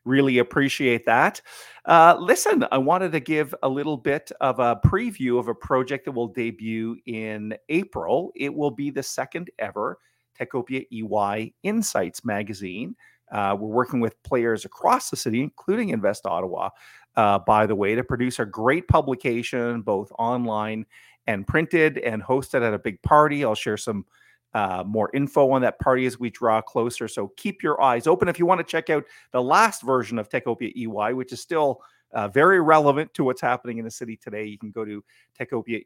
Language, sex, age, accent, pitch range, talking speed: English, male, 40-59, American, 110-140 Hz, 185 wpm